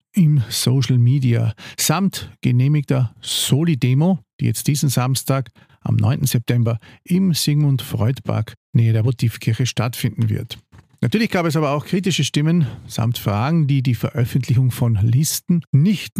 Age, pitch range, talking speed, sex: 50-69, 115-145 Hz, 130 wpm, male